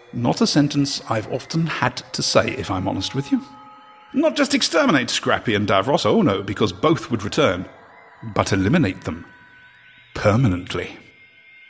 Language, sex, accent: English, male, British